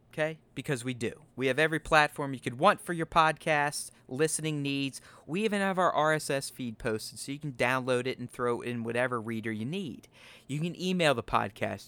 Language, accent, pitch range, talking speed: English, American, 115-145 Hz, 200 wpm